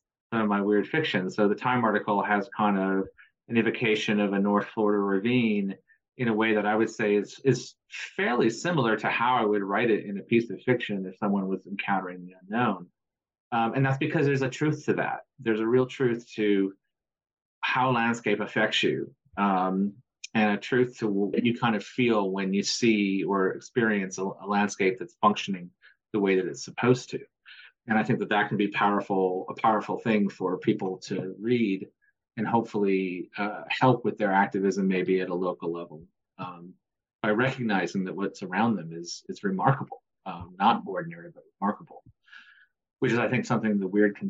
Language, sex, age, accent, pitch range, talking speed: English, male, 30-49, American, 100-120 Hz, 190 wpm